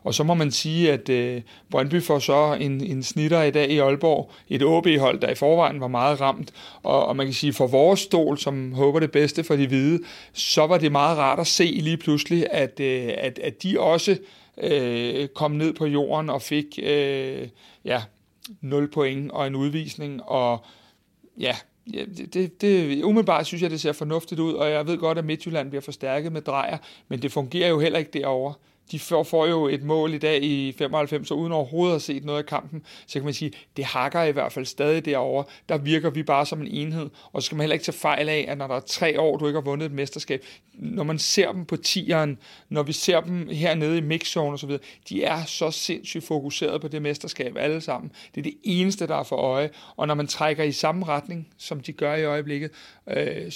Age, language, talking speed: 60-79, Danish, 225 wpm